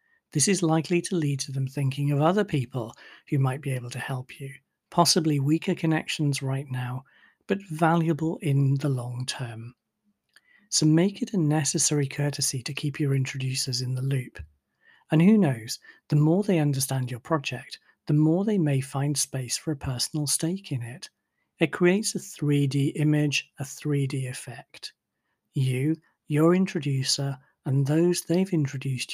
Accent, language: British, English